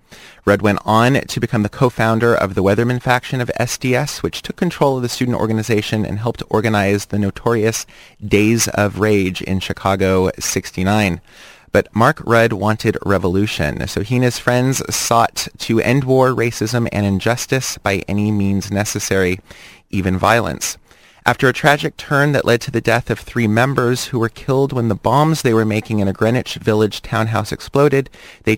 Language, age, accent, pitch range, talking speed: English, 30-49, American, 100-120 Hz, 170 wpm